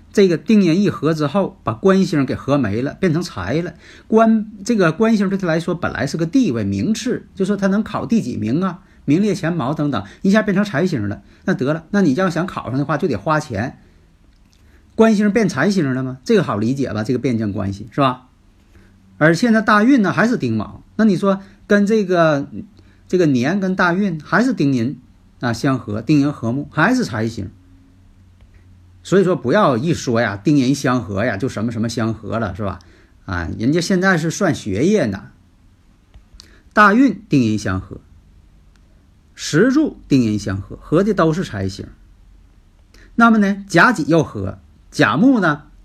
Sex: male